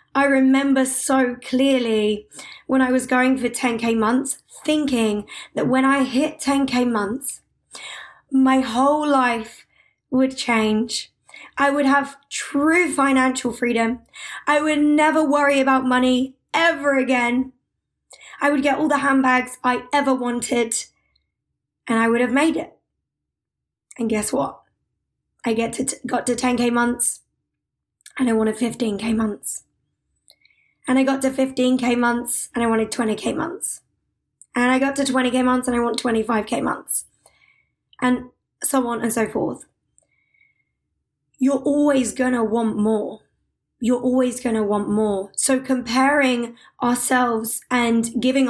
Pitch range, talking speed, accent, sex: 235-270 Hz, 135 wpm, British, female